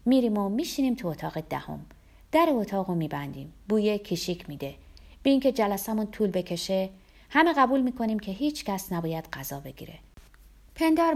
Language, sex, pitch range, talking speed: Persian, female, 170-245 Hz, 150 wpm